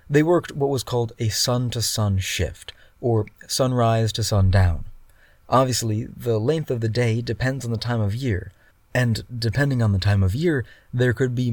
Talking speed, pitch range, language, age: 175 wpm, 105-125 Hz, English, 20-39